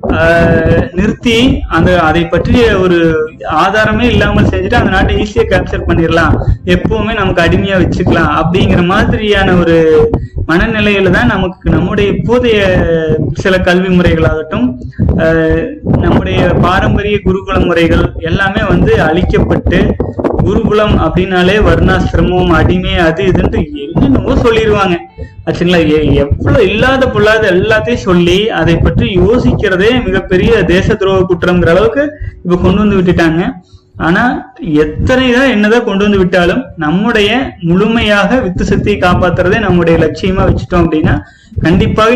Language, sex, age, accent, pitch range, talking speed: Tamil, male, 30-49, native, 165-210 Hz, 100 wpm